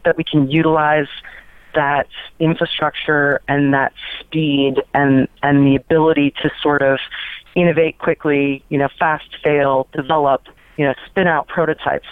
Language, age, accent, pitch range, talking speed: English, 30-49, American, 135-160 Hz, 140 wpm